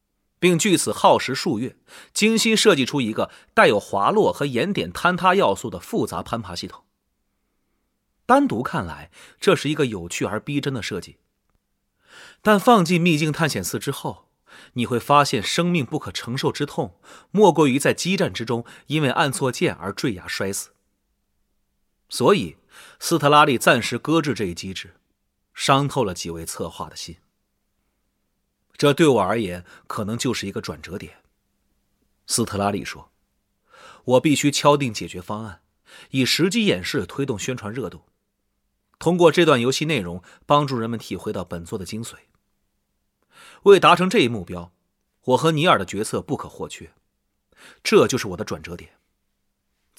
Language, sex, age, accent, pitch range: Chinese, male, 30-49, native, 100-160 Hz